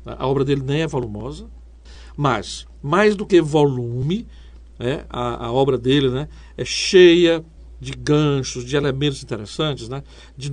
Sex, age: male, 60-79